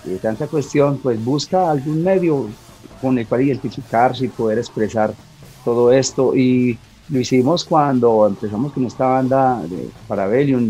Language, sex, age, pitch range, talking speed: Spanish, male, 40-59, 120-145 Hz, 150 wpm